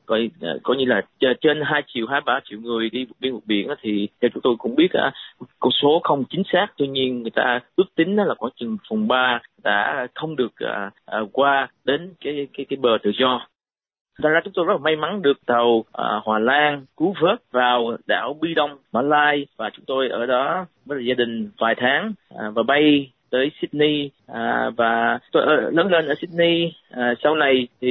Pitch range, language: 120-150 Hz, Vietnamese